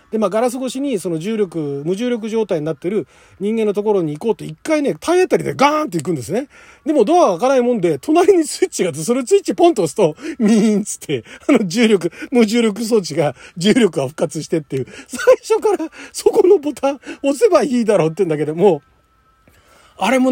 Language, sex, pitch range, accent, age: Japanese, male, 185-285 Hz, native, 40-59